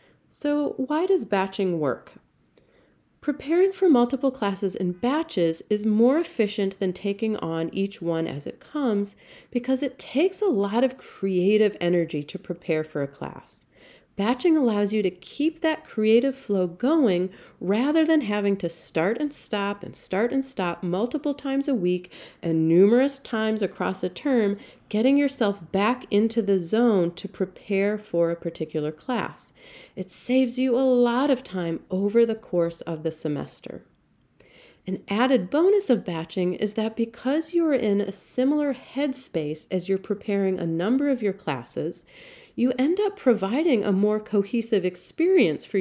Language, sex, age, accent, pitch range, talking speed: English, female, 40-59, American, 180-260 Hz, 155 wpm